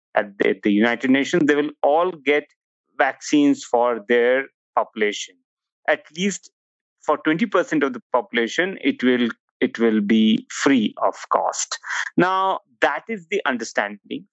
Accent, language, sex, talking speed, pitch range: Indian, English, male, 140 wpm, 120-195 Hz